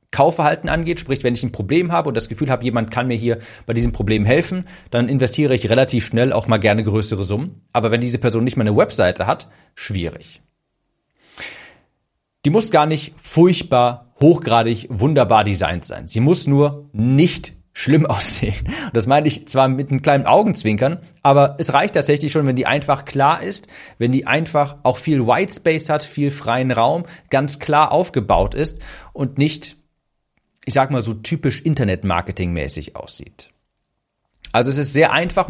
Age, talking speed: 40-59, 175 wpm